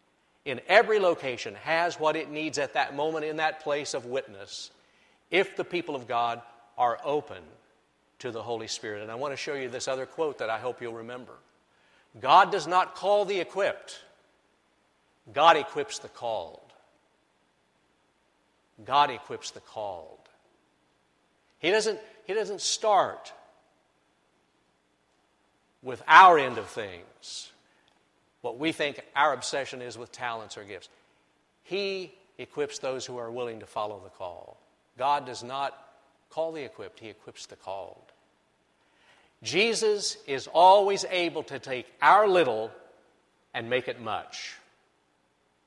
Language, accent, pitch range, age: English, American, 105-170 Hz, 60-79